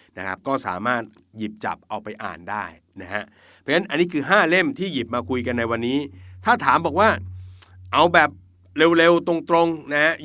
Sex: male